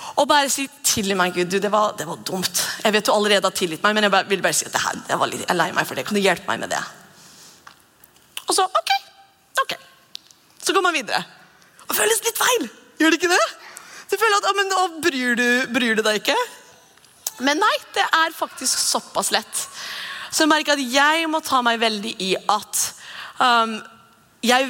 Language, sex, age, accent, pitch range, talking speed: English, female, 30-49, Swedish, 200-310 Hz, 225 wpm